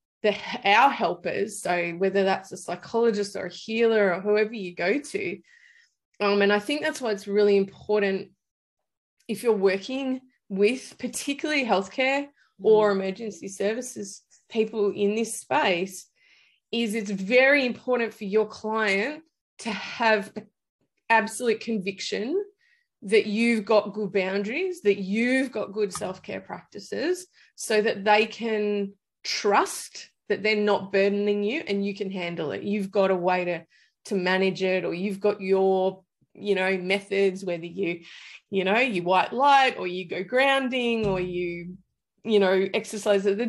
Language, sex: English, female